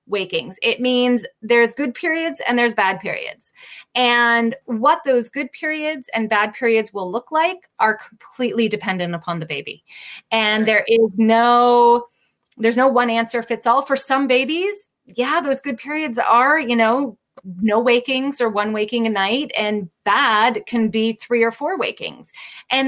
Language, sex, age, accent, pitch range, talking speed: English, female, 30-49, American, 215-270 Hz, 165 wpm